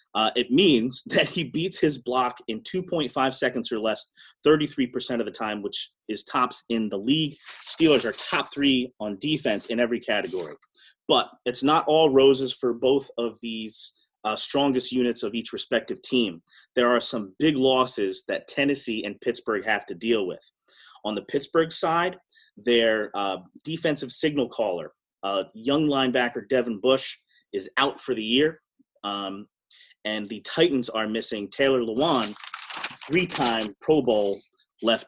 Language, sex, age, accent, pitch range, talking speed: English, male, 30-49, American, 120-155 Hz, 155 wpm